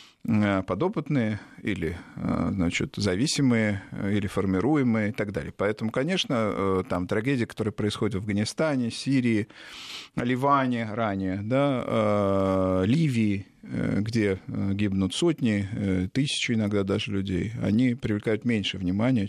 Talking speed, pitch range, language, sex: 105 wpm, 95-125 Hz, Russian, male